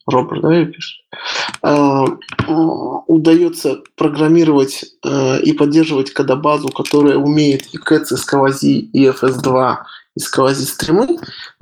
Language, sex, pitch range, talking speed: Russian, male, 135-165 Hz, 105 wpm